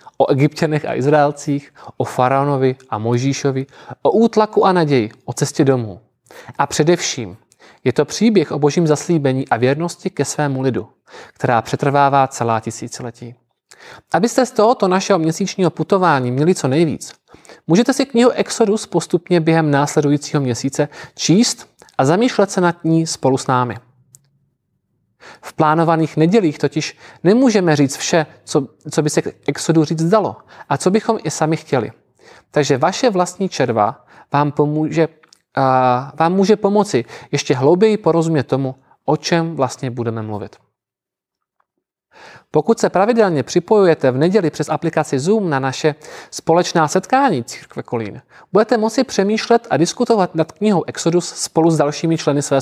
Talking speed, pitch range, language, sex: 140 wpm, 135-180 Hz, Czech, male